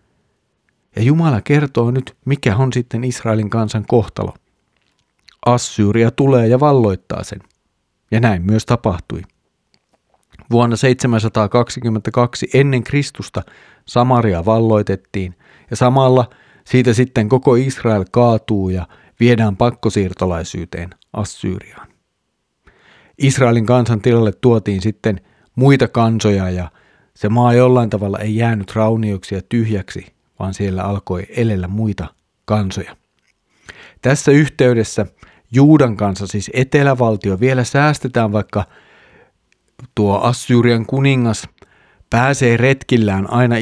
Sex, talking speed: male, 100 wpm